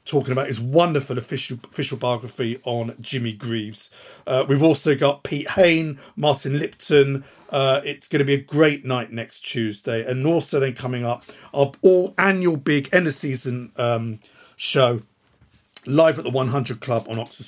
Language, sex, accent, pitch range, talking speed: English, male, British, 120-150 Hz, 160 wpm